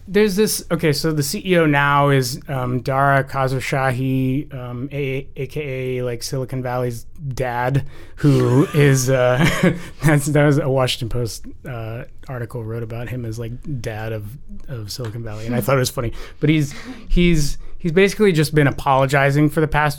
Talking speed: 170 wpm